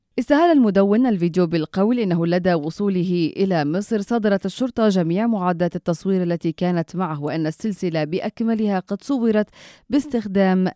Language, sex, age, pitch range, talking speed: Arabic, female, 30-49, 165-220 Hz, 130 wpm